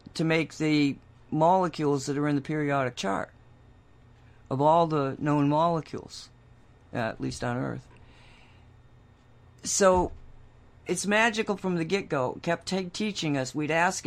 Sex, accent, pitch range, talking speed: female, American, 125-160 Hz, 140 wpm